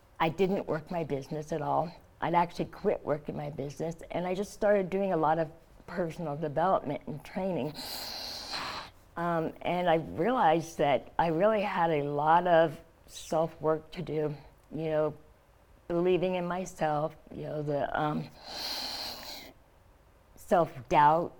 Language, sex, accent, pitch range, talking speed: English, female, American, 155-180 Hz, 135 wpm